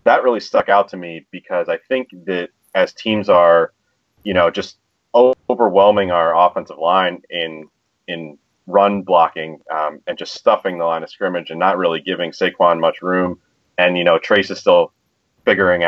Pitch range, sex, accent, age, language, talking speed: 85-110 Hz, male, American, 30-49, English, 175 wpm